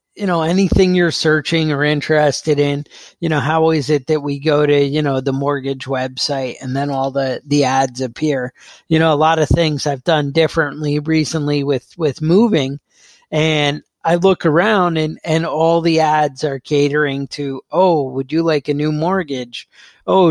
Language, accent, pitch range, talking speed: English, American, 145-170 Hz, 185 wpm